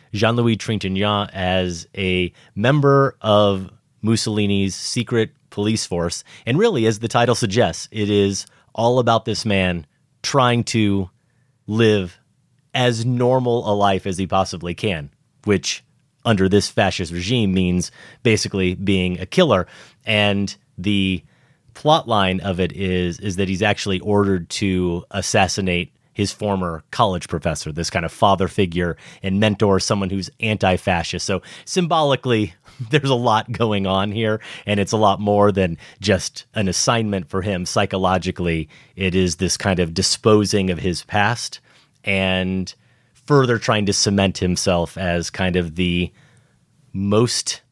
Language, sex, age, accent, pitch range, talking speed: English, male, 30-49, American, 95-115 Hz, 140 wpm